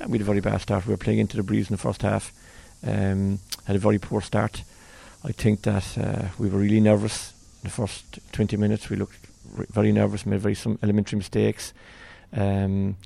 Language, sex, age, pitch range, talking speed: English, male, 40-59, 105-115 Hz, 210 wpm